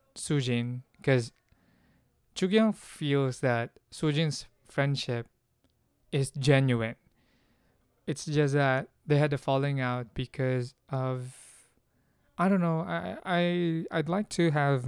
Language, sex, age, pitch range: English, male, 20-39, 125-145 Hz